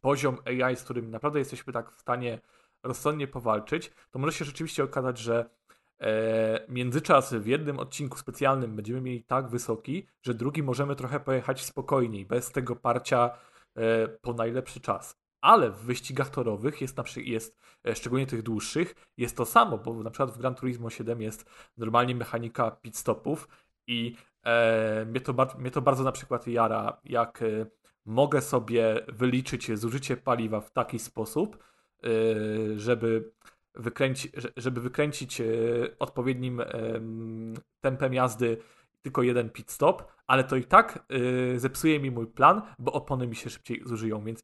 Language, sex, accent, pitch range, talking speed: Polish, male, native, 115-135 Hz, 150 wpm